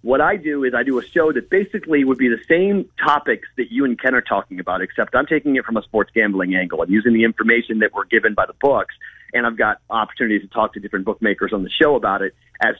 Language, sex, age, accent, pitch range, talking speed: English, male, 40-59, American, 105-130 Hz, 265 wpm